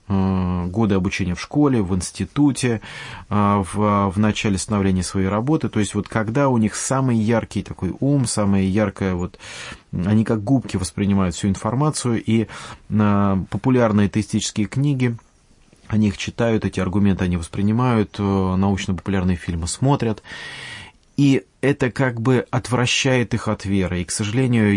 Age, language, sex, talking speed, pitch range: 30-49, English, male, 140 wpm, 100-125 Hz